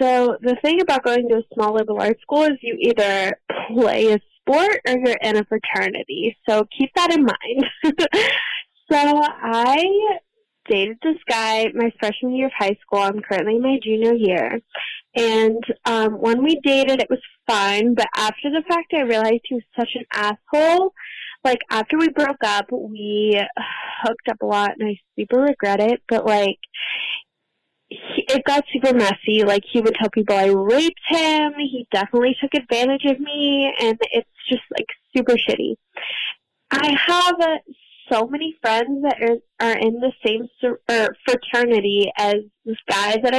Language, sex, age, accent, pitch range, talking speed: English, female, 10-29, American, 220-285 Hz, 165 wpm